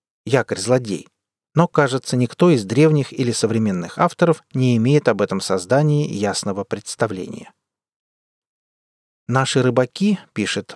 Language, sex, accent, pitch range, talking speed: Russian, male, native, 115-155 Hz, 110 wpm